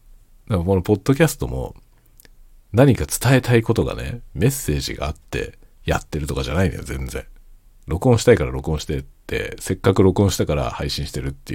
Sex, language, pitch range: male, Japanese, 75-115 Hz